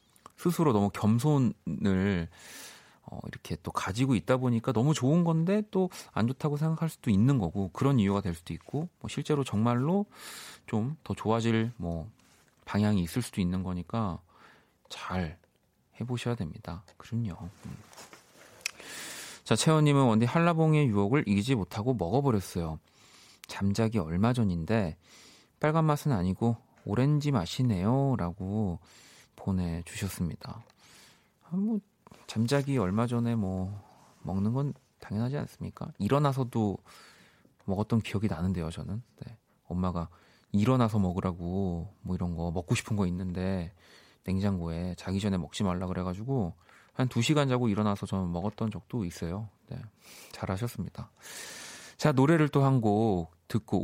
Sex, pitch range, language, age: male, 95-130 Hz, Korean, 40-59